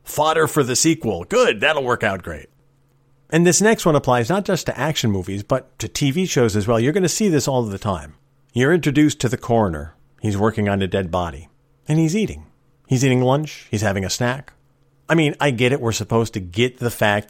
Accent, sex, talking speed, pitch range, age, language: American, male, 225 wpm, 105-145 Hz, 40-59, English